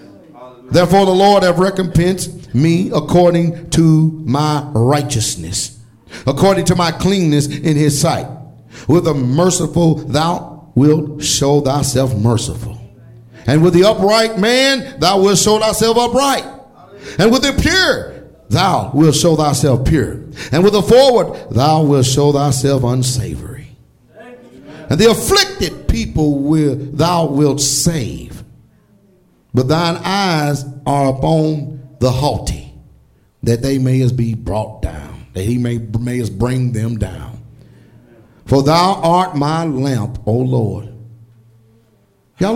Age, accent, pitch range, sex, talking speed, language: 50-69, American, 125-195 Hz, male, 125 wpm, English